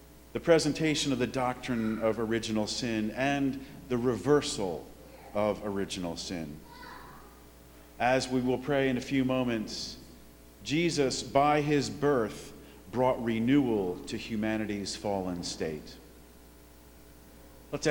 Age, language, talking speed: 40-59, English, 110 wpm